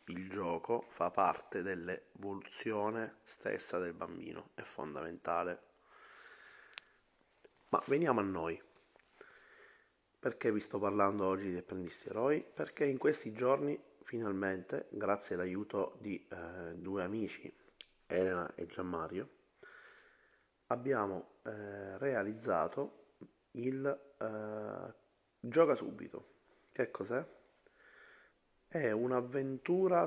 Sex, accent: male, native